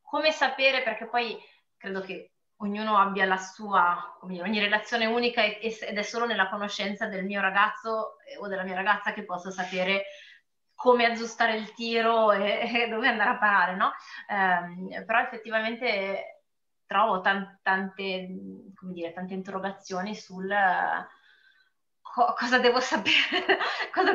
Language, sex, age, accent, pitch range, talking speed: Italian, female, 20-39, native, 185-230 Hz, 140 wpm